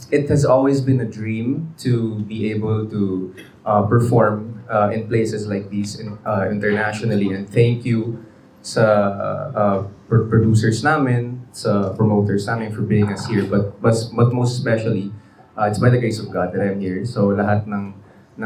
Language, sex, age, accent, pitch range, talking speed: Filipino, male, 20-39, native, 105-130 Hz, 175 wpm